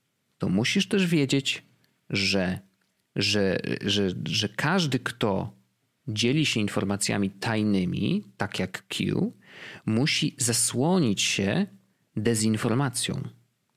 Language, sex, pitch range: Polish, male, 105-150 Hz